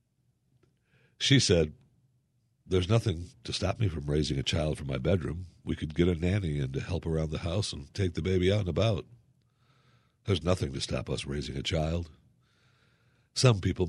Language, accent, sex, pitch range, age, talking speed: English, American, male, 90-125 Hz, 60-79, 180 wpm